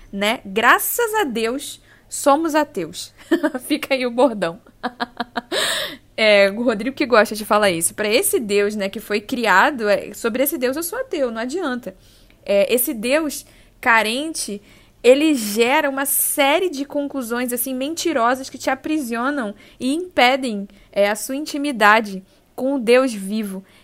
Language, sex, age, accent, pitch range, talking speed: Portuguese, female, 10-29, Brazilian, 200-275 Hz, 150 wpm